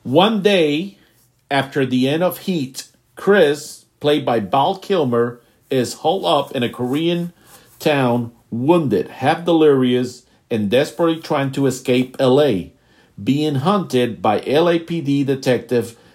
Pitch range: 125-165 Hz